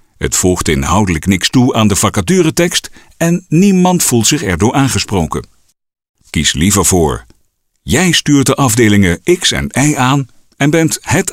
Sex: male